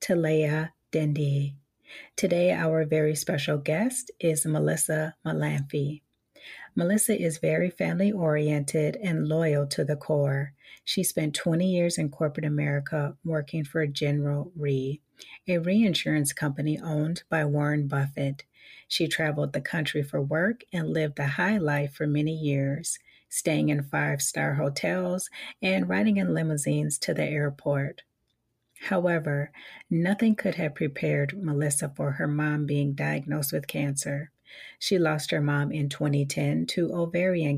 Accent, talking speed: American, 135 wpm